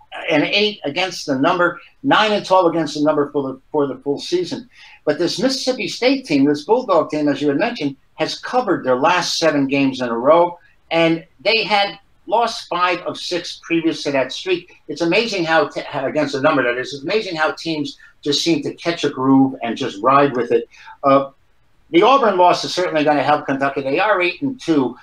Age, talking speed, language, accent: 60-79, 210 wpm, English, American